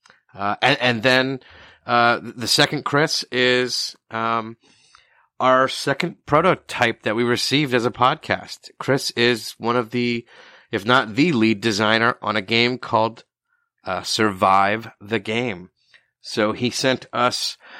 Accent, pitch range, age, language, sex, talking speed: American, 105-125 Hz, 30-49, English, male, 140 wpm